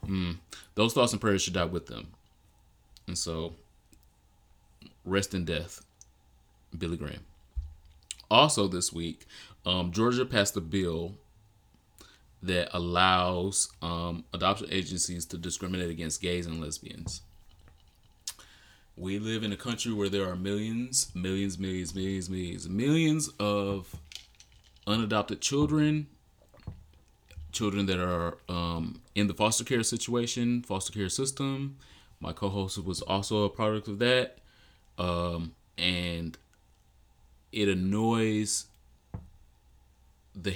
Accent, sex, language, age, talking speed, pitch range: American, male, English, 30-49, 115 wpm, 85-105 Hz